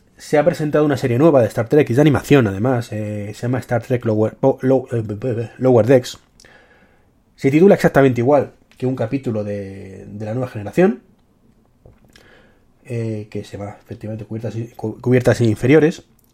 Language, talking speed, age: Spanish, 150 wpm, 30-49